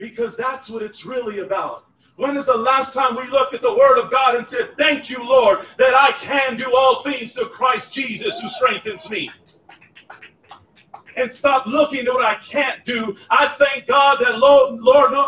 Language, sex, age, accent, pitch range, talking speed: English, male, 40-59, American, 250-285 Hz, 190 wpm